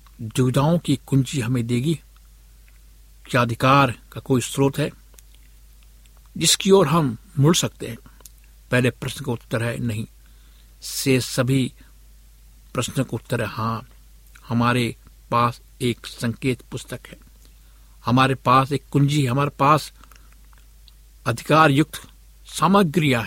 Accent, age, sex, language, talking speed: native, 60-79, male, Hindi, 115 wpm